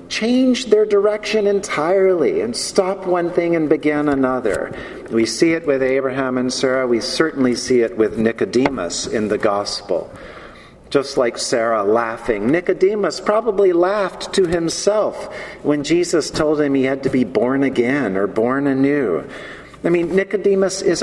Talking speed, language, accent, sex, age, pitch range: 150 wpm, English, American, male, 50-69, 130-200 Hz